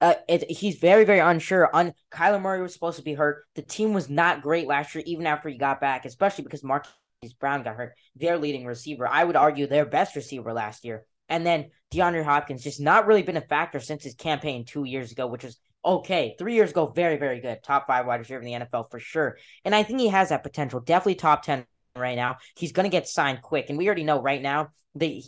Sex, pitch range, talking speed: female, 135-175 Hz, 245 wpm